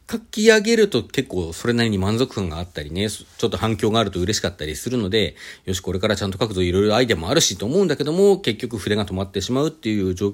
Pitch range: 100-145 Hz